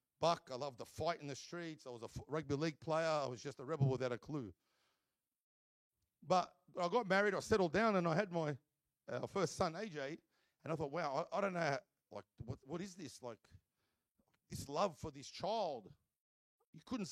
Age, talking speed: 50-69, 210 wpm